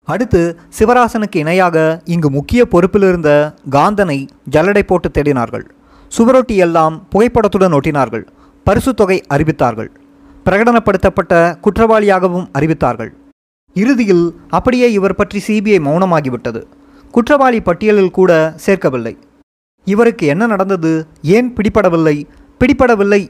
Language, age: Tamil, 20-39